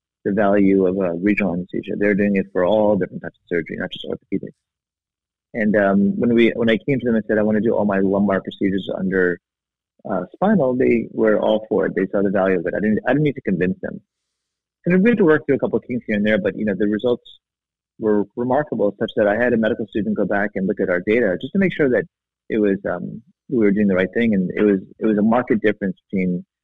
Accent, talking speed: American, 260 wpm